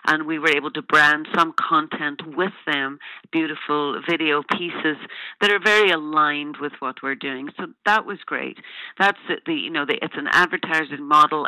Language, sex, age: English, female, 50-69